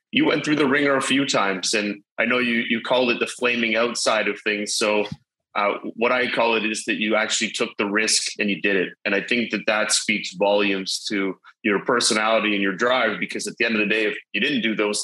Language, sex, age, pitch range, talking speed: English, male, 30-49, 105-120 Hz, 245 wpm